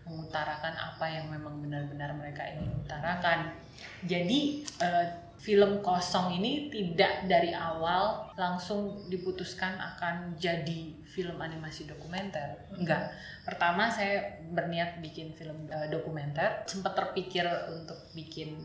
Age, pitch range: 20-39, 155-185 Hz